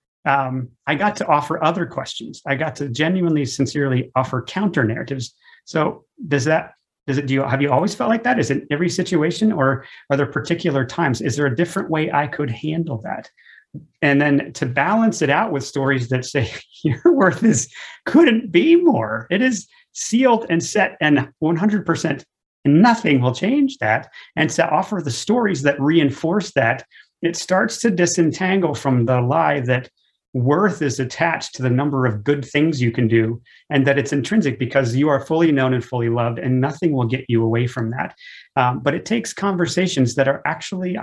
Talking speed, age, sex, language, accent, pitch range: 185 wpm, 40-59, male, English, American, 130-170 Hz